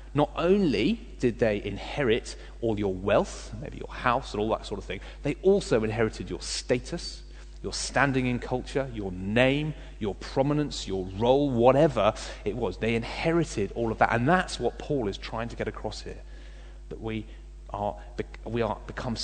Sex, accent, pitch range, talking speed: male, British, 95-125 Hz, 175 wpm